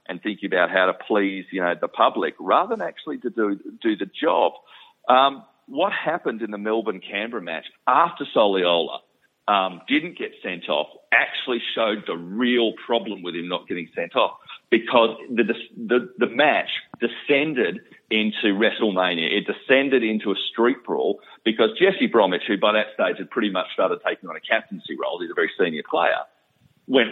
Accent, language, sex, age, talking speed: Australian, English, male, 40-59, 175 wpm